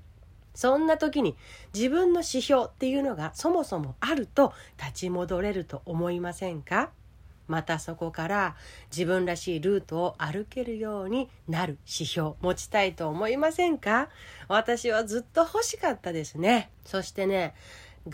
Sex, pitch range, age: female, 165-255 Hz, 40-59